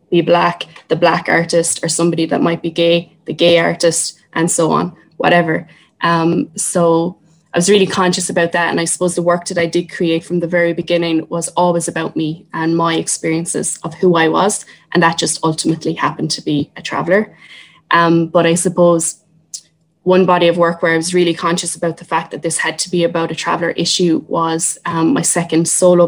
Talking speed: 205 wpm